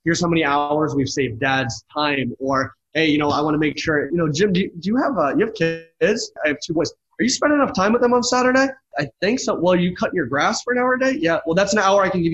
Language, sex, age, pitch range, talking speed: English, male, 20-39, 135-170 Hz, 310 wpm